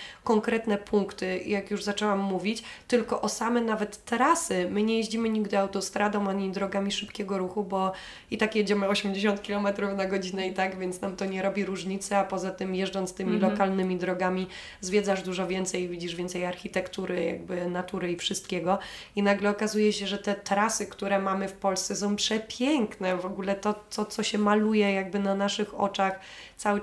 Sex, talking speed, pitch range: female, 175 wpm, 190-205 Hz